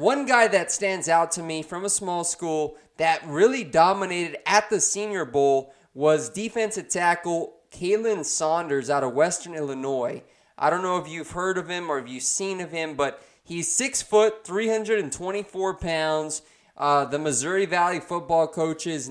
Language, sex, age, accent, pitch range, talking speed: English, male, 20-39, American, 155-190 Hz, 165 wpm